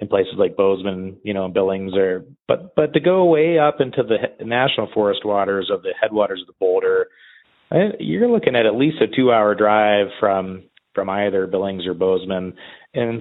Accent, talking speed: American, 200 wpm